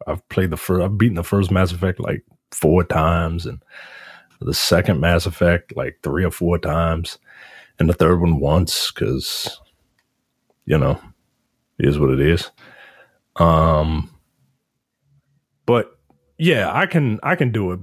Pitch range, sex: 95-140 Hz, male